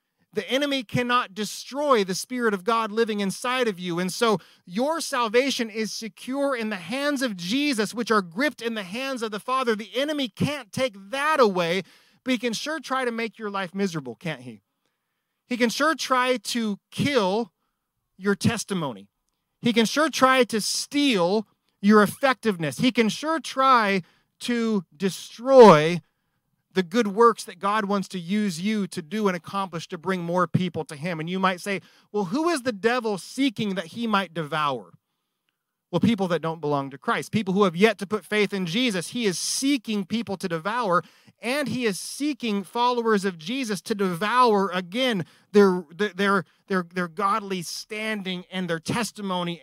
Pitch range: 185-240 Hz